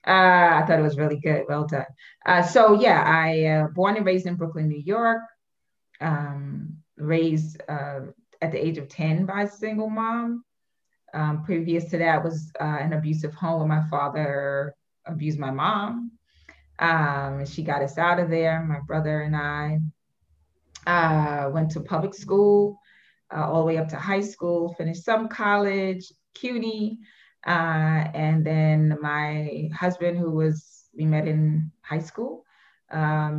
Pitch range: 150-175 Hz